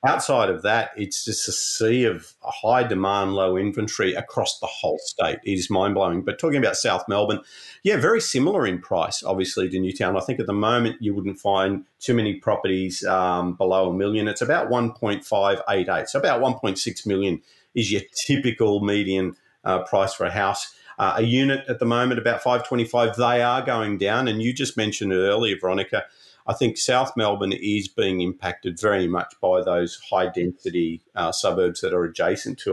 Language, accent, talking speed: English, Australian, 185 wpm